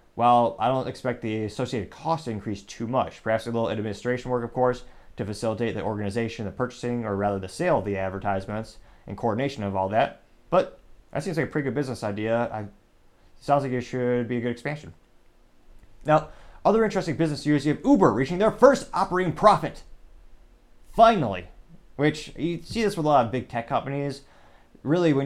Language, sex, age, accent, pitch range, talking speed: English, male, 30-49, American, 115-150 Hz, 190 wpm